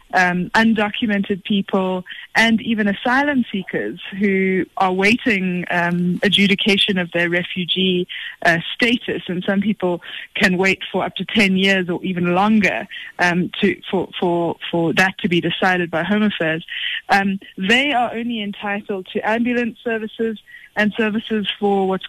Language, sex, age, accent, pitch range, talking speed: English, female, 20-39, British, 180-220 Hz, 145 wpm